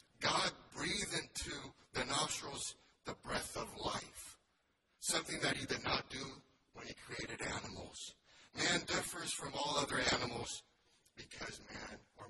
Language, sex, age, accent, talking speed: English, male, 60-79, American, 135 wpm